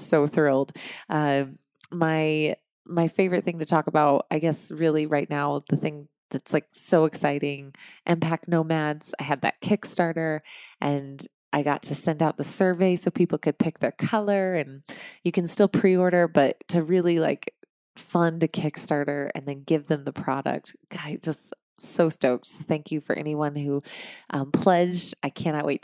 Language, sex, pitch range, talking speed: English, female, 150-175 Hz, 170 wpm